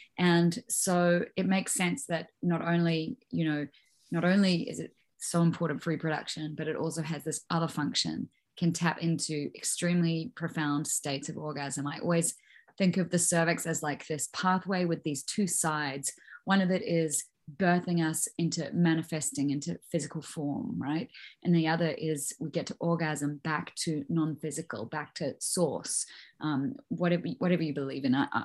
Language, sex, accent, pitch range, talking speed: English, female, Australian, 155-190 Hz, 170 wpm